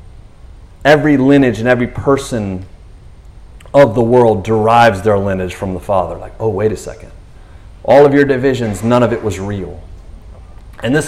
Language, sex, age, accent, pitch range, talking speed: English, male, 30-49, American, 95-135 Hz, 160 wpm